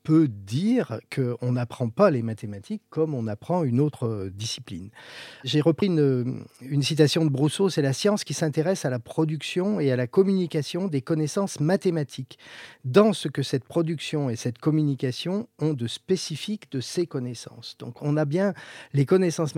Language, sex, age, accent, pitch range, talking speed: French, male, 40-59, French, 120-160 Hz, 170 wpm